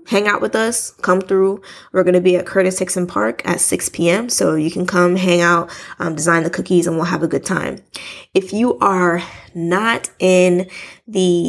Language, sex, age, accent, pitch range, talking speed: English, female, 20-39, American, 170-190 Hz, 205 wpm